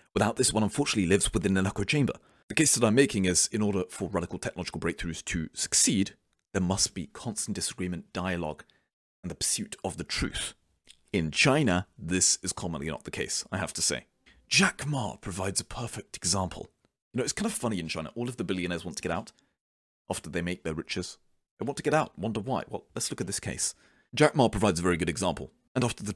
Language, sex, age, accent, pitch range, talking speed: English, male, 30-49, British, 85-110 Hz, 225 wpm